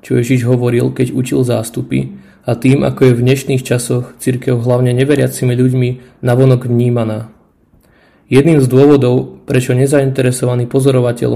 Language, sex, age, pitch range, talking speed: Slovak, male, 20-39, 120-135 Hz, 130 wpm